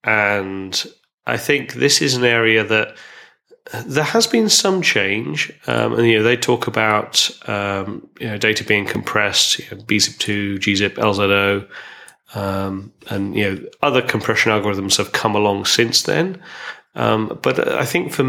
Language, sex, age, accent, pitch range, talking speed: English, male, 30-49, British, 100-115 Hz, 160 wpm